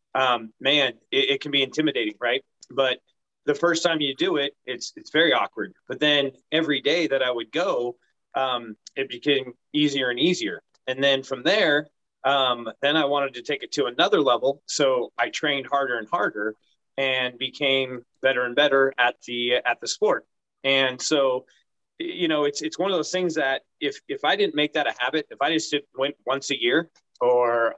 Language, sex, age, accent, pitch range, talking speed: English, male, 30-49, American, 125-155 Hz, 195 wpm